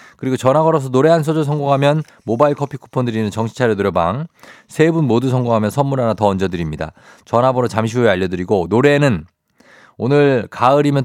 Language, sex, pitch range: Korean, male, 100-140 Hz